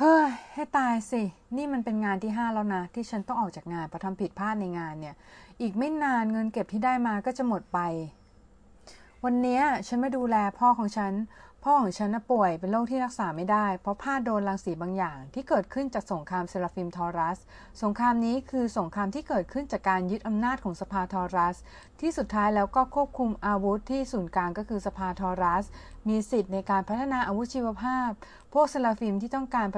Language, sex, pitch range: Thai, female, 190-235 Hz